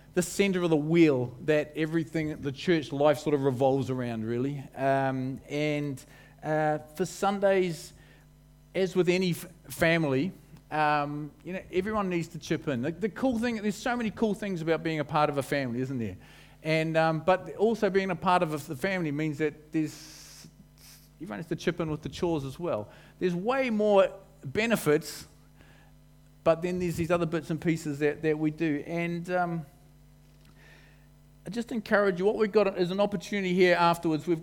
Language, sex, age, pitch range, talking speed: English, male, 40-59, 145-180 Hz, 180 wpm